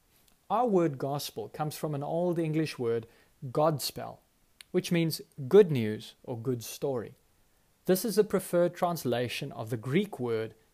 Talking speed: 145 wpm